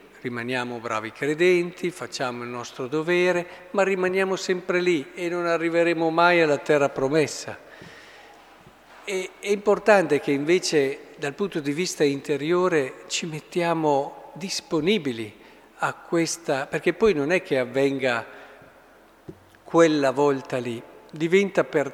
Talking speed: 120 wpm